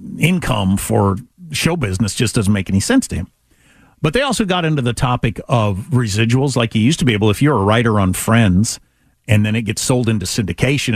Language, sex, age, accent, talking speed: English, male, 50-69, American, 215 wpm